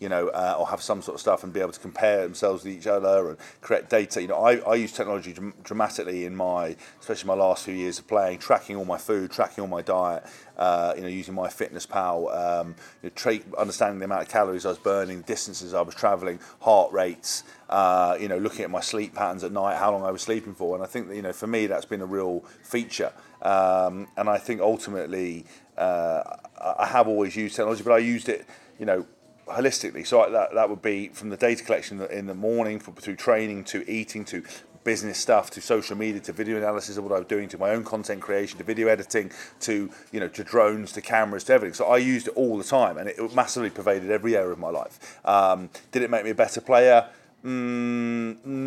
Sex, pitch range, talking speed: male, 95-115 Hz, 235 wpm